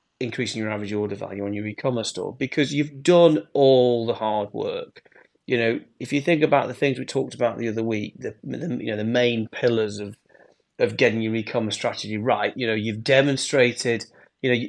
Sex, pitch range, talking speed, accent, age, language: male, 115-150 Hz, 205 wpm, British, 30-49, English